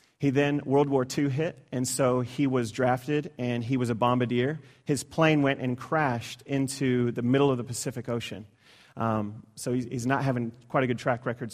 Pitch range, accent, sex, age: 120-135 Hz, American, male, 30-49